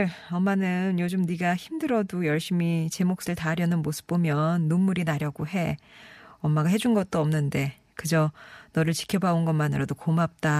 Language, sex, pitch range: Korean, female, 160-215 Hz